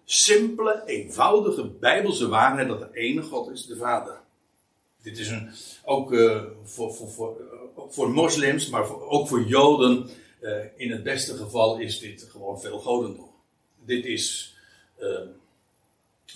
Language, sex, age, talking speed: Dutch, male, 60-79, 145 wpm